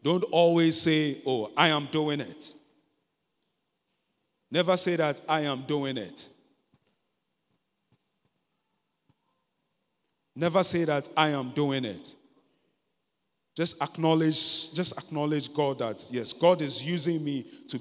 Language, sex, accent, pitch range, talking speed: English, male, Nigerian, 125-155 Hz, 115 wpm